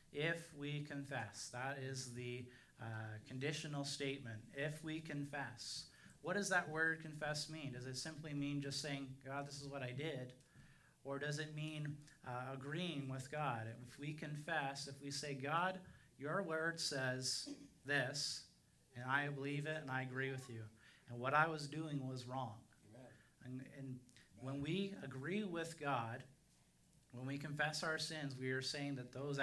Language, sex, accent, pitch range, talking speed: English, male, American, 125-150 Hz, 165 wpm